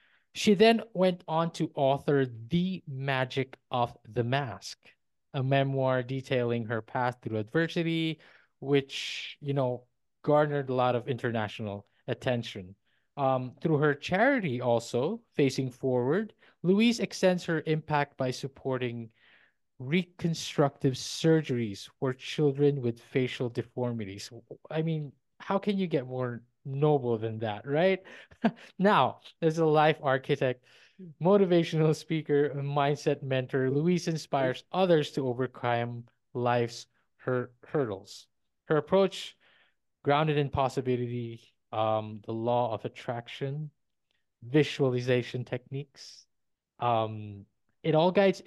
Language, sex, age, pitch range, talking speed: English, male, 20-39, 120-155 Hz, 115 wpm